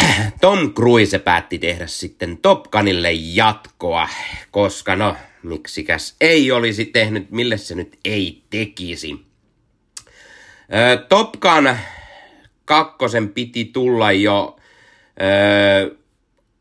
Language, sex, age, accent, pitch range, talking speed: Finnish, male, 30-49, native, 95-125 Hz, 90 wpm